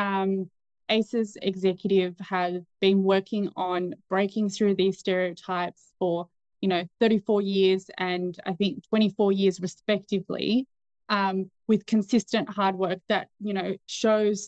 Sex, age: female, 20-39